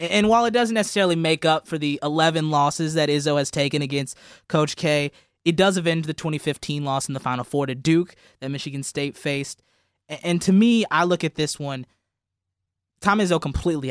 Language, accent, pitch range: English, American, 135-175 Hz